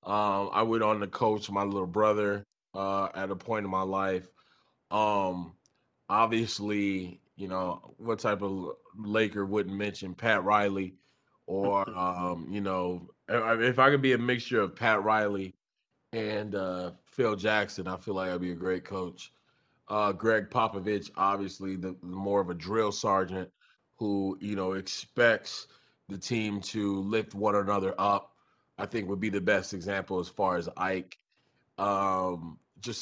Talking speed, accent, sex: 160 wpm, American, male